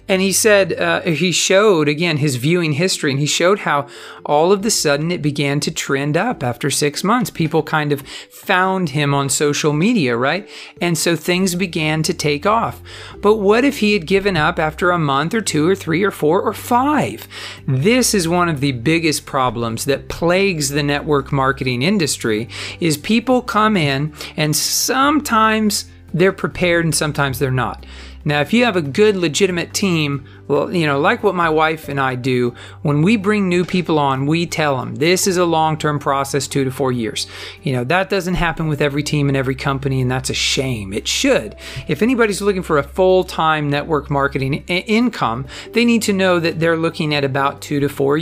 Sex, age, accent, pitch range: male, 40-59, American, 140-195 Hz